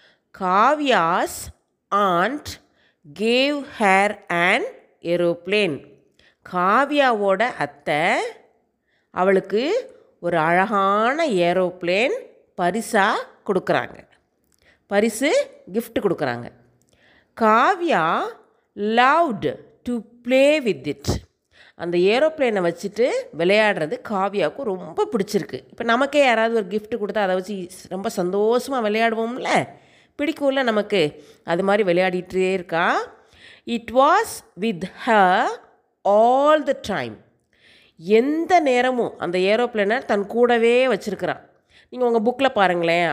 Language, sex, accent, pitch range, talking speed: Tamil, female, native, 185-255 Hz, 90 wpm